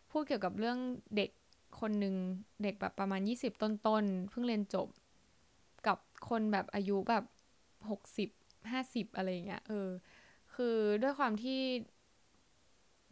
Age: 10-29